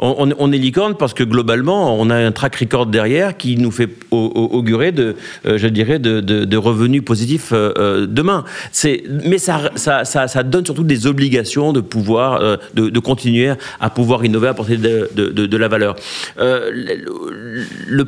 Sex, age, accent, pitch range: male, 40-59, French, 110-140 Hz